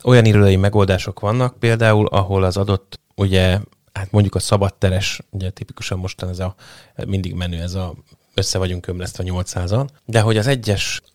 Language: Hungarian